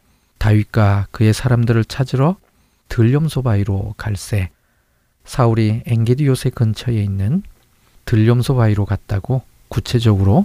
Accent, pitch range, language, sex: native, 105-130 Hz, Korean, male